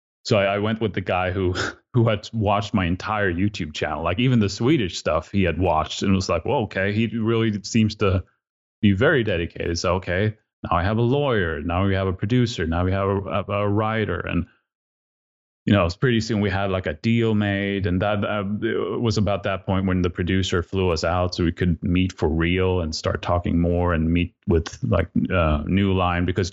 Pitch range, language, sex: 85-100 Hz, English, male